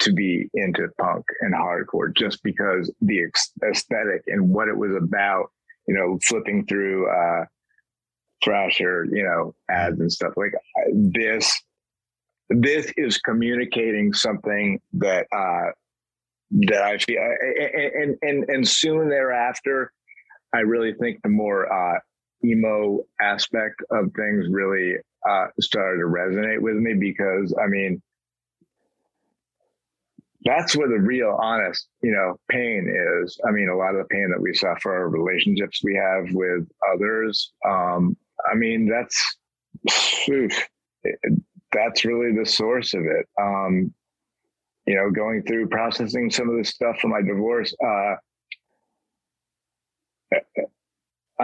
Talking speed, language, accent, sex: 130 wpm, English, American, male